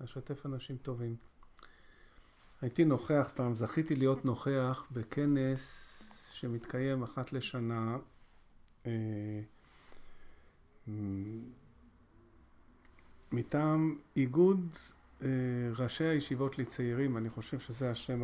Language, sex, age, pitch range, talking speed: Hebrew, male, 50-69, 110-135 Hz, 80 wpm